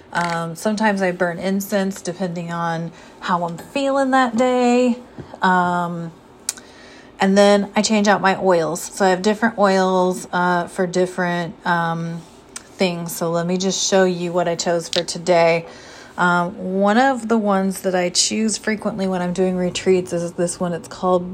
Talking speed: 165 wpm